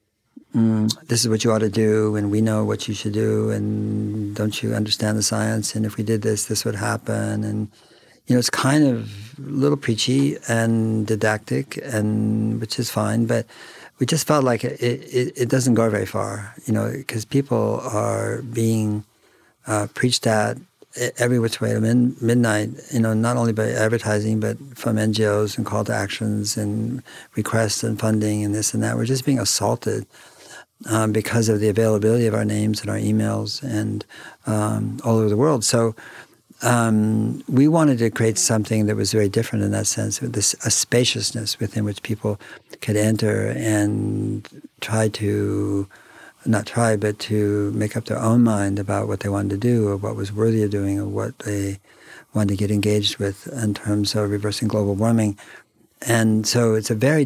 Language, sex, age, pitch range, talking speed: English, male, 50-69, 105-115 Hz, 185 wpm